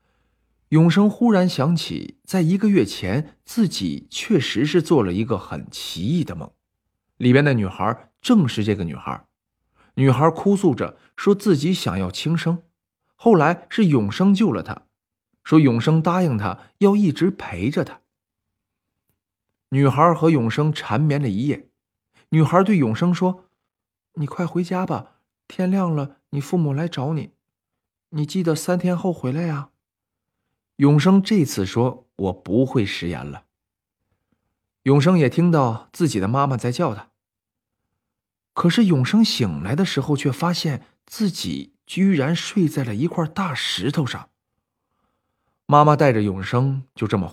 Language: Chinese